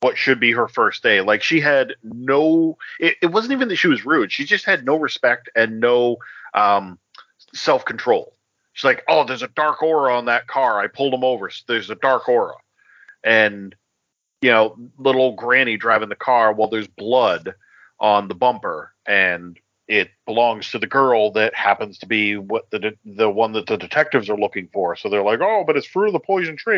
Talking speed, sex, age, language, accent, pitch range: 200 wpm, male, 40-59, English, American, 110-150 Hz